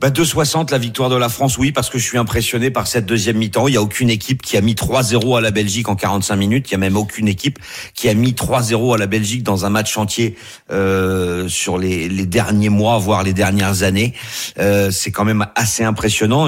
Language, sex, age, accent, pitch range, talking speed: French, male, 40-59, French, 100-120 Hz, 235 wpm